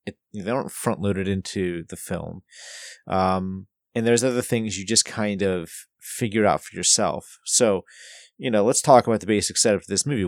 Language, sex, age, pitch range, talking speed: English, male, 30-49, 95-110 Hz, 185 wpm